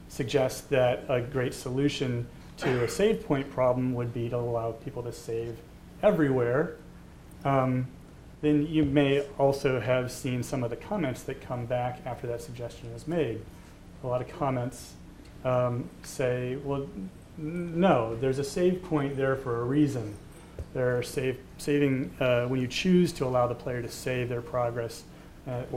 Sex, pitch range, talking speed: male, 120-145 Hz, 160 wpm